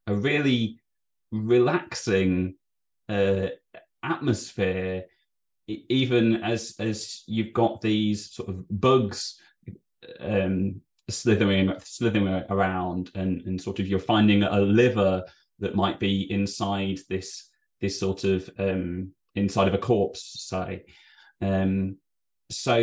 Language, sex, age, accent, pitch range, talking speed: English, male, 20-39, British, 95-115 Hz, 110 wpm